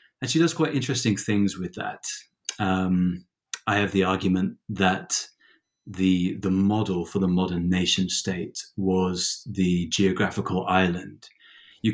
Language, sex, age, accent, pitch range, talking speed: English, male, 30-49, British, 95-105 Hz, 130 wpm